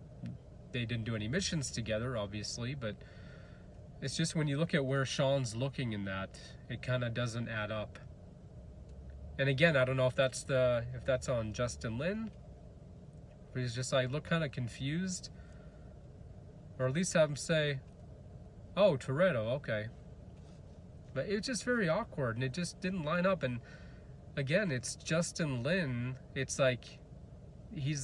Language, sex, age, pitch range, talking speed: English, male, 30-49, 115-150 Hz, 155 wpm